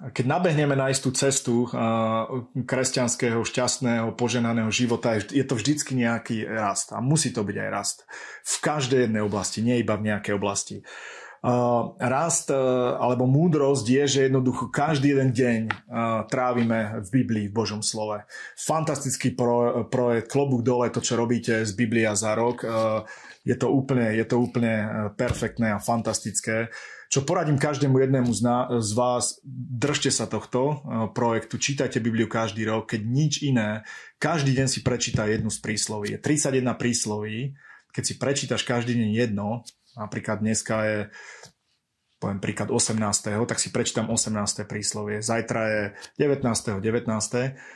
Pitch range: 110-130 Hz